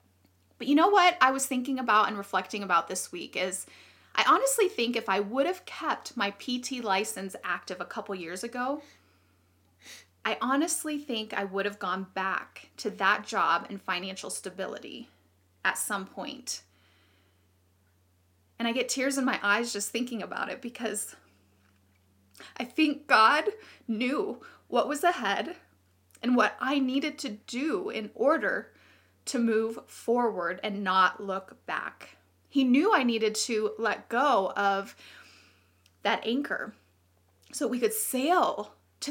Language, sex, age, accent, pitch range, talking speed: English, female, 30-49, American, 190-270 Hz, 145 wpm